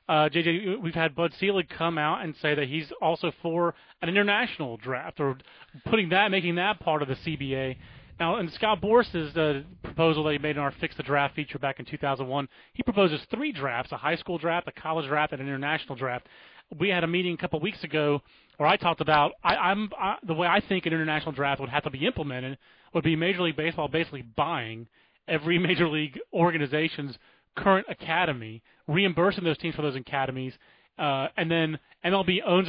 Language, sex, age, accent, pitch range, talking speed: English, male, 30-49, American, 145-175 Hz, 200 wpm